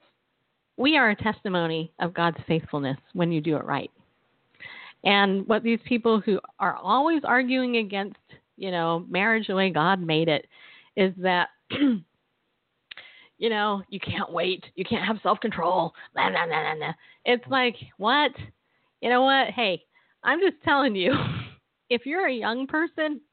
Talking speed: 145 wpm